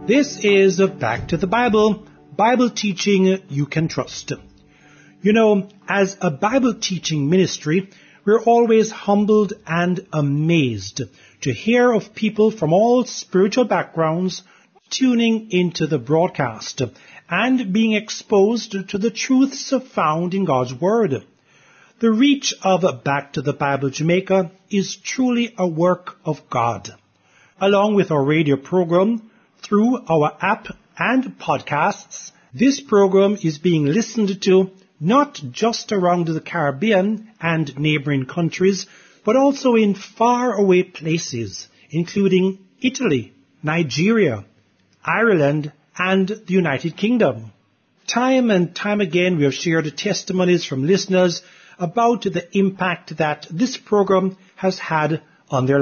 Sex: male